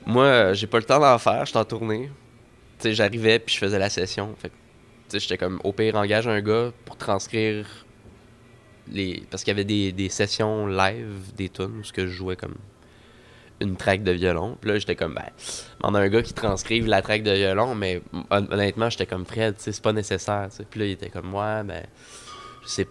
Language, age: French, 20-39